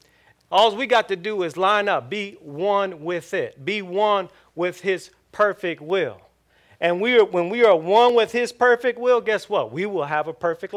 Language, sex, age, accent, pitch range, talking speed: English, male, 40-59, American, 165-235 Hz, 200 wpm